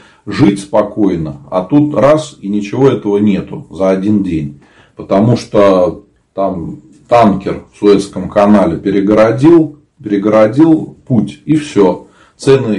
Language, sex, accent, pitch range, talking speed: Russian, male, native, 100-125 Hz, 115 wpm